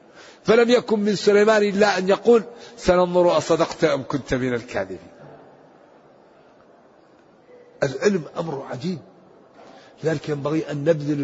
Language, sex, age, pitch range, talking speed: Arabic, male, 50-69, 145-180 Hz, 105 wpm